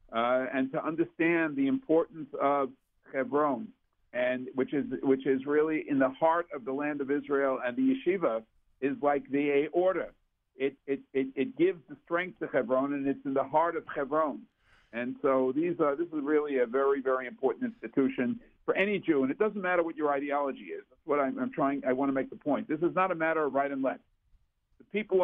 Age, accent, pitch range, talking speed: 50-69, American, 135-185 Hz, 215 wpm